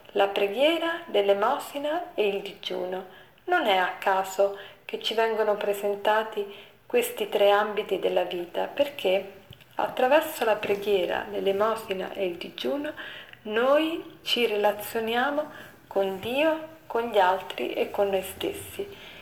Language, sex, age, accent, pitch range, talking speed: Italian, female, 40-59, native, 195-255 Hz, 120 wpm